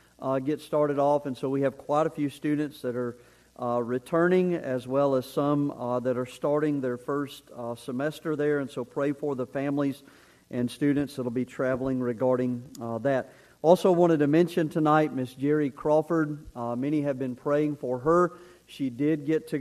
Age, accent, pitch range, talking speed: 50-69, American, 130-150 Hz, 195 wpm